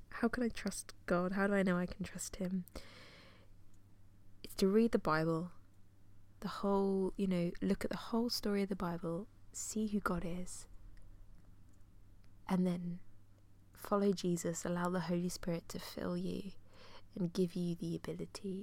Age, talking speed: 20-39, 160 wpm